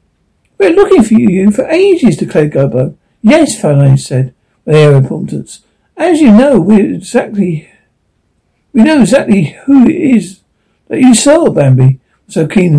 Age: 60-79